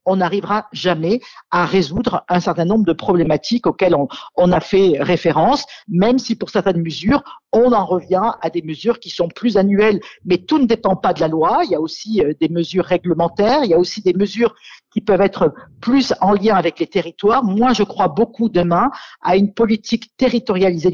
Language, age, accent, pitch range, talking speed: French, 50-69, French, 180-230 Hz, 200 wpm